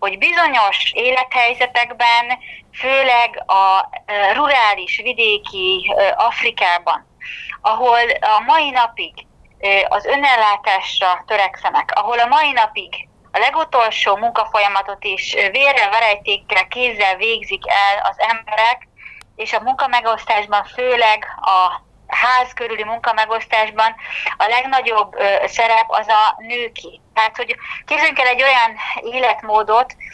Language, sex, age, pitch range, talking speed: Hungarian, female, 30-49, 215-250 Hz, 110 wpm